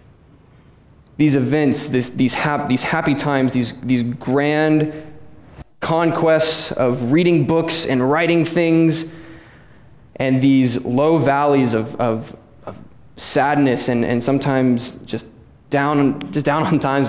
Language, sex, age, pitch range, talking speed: English, male, 20-39, 130-150 Hz, 125 wpm